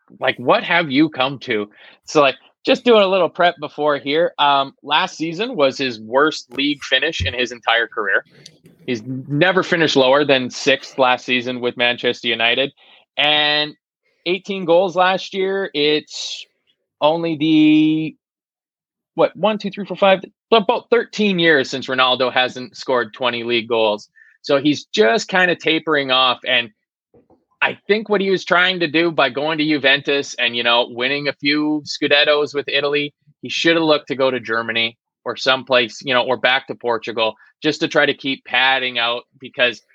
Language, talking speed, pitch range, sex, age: English, 175 wpm, 120-155 Hz, male, 20-39